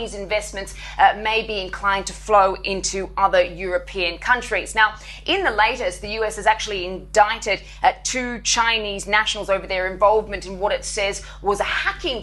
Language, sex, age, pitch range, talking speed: English, female, 20-39, 195-225 Hz, 165 wpm